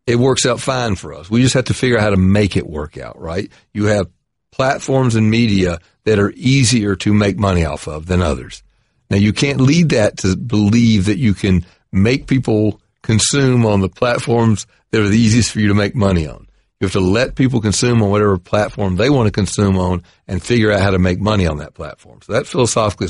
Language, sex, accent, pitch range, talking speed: English, male, American, 95-120 Hz, 225 wpm